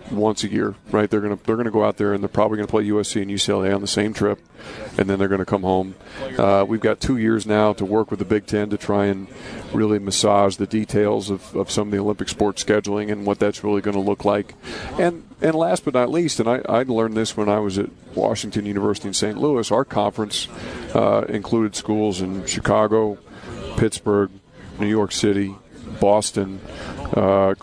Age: 50-69